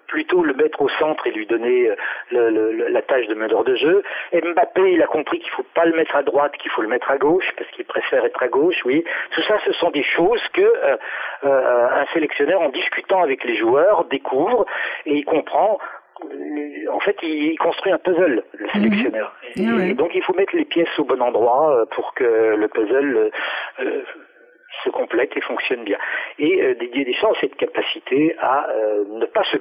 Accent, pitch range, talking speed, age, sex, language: French, 305-435 Hz, 210 wpm, 50-69, male, French